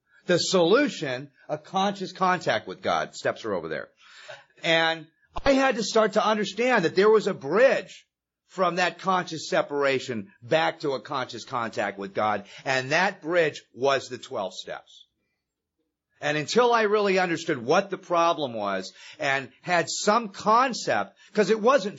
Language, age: English, 40-59